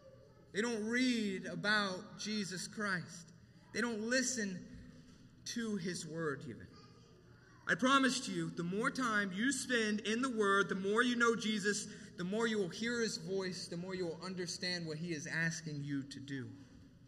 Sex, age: male, 30-49